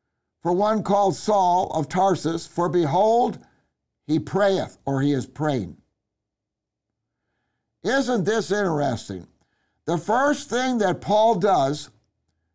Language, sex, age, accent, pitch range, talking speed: English, male, 60-79, American, 120-185 Hz, 110 wpm